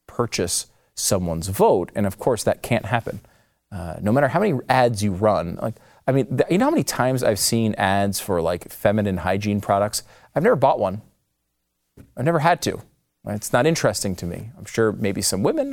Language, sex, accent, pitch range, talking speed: English, male, American, 100-135 Hz, 200 wpm